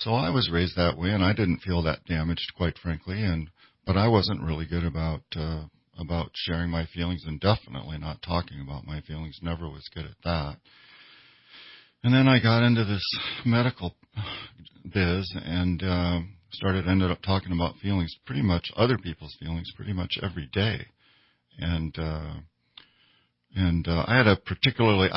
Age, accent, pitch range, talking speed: 50-69, American, 80-95 Hz, 170 wpm